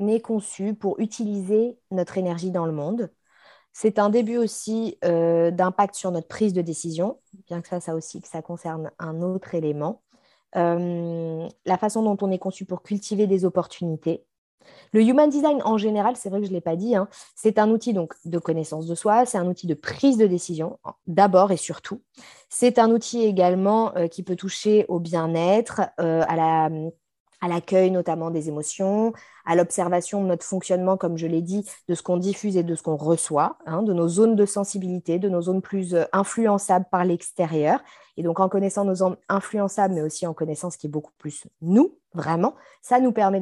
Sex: female